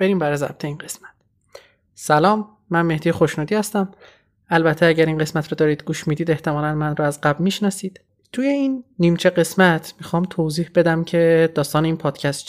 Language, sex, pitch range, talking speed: Persian, male, 155-185 Hz, 170 wpm